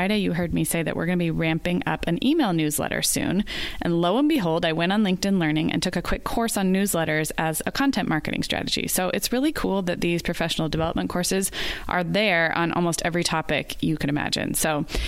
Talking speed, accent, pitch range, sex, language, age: 225 wpm, American, 170-215 Hz, female, English, 20-39